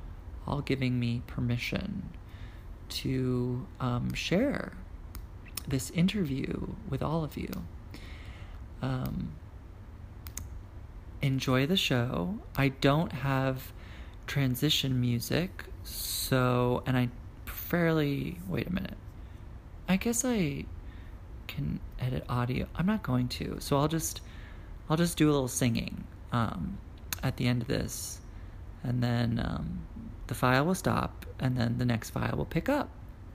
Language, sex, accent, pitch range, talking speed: English, male, American, 90-135 Hz, 125 wpm